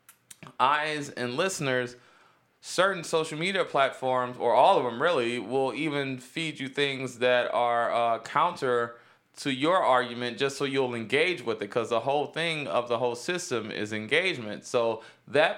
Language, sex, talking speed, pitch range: English, male, 160 wpm, 120-145 Hz